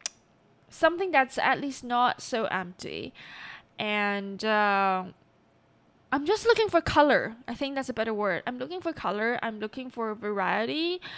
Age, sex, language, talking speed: 10-29, female, English, 150 wpm